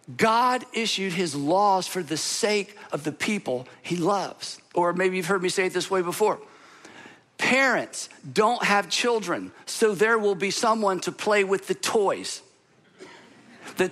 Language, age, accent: English, 50-69, American